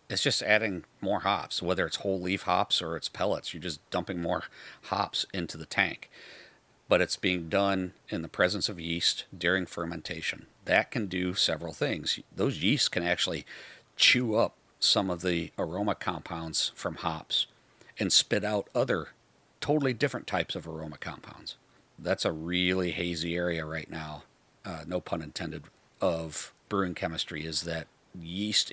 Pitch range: 85-100 Hz